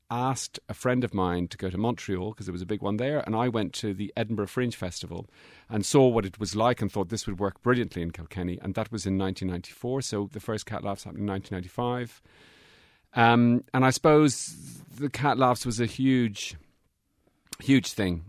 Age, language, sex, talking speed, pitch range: 40-59, English, male, 205 wpm, 95-120 Hz